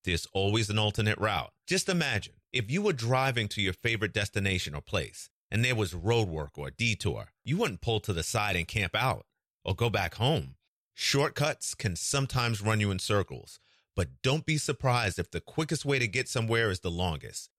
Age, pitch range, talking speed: 40-59, 100-140 Hz, 200 wpm